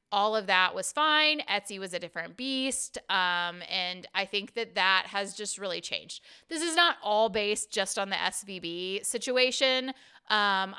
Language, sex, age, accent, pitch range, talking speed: English, female, 30-49, American, 185-240 Hz, 175 wpm